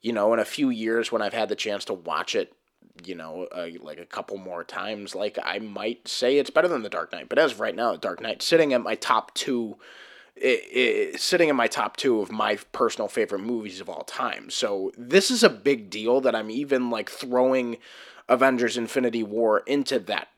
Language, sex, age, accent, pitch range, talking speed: English, male, 20-39, American, 115-165 Hz, 225 wpm